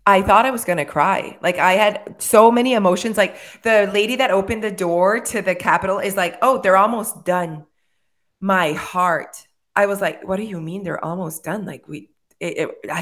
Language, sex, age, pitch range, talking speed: English, female, 20-39, 185-240 Hz, 200 wpm